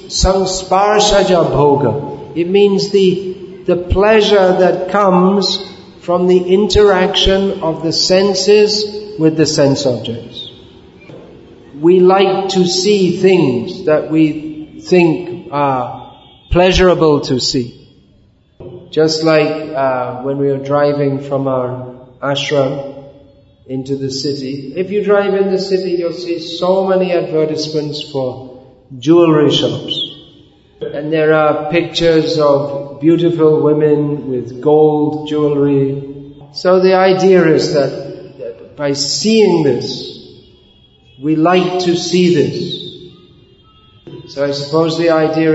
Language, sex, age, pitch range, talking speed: English, male, 50-69, 140-180 Hz, 115 wpm